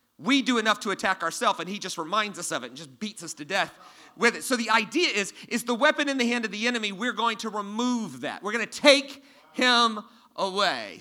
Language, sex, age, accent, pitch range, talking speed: English, male, 40-59, American, 205-265 Hz, 245 wpm